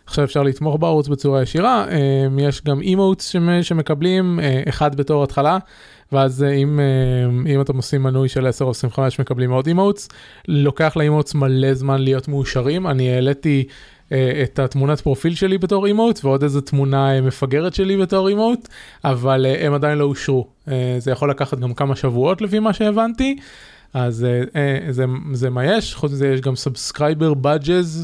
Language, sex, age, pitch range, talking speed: Hebrew, male, 20-39, 130-155 Hz, 155 wpm